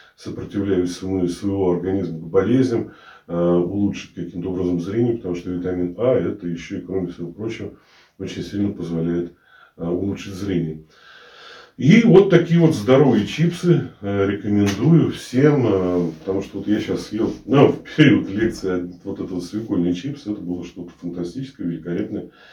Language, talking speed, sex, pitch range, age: Russian, 150 wpm, male, 95-130 Hz, 40-59